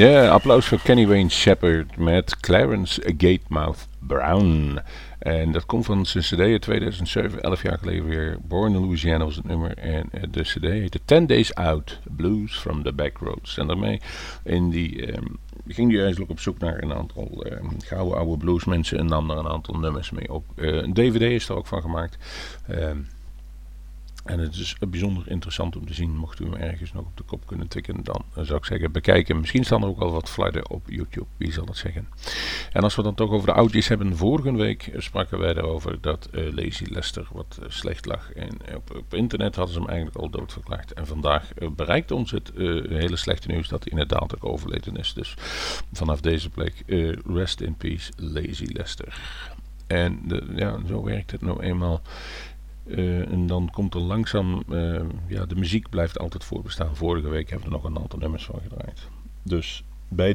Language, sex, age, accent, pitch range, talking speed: Dutch, male, 50-69, Dutch, 80-100 Hz, 205 wpm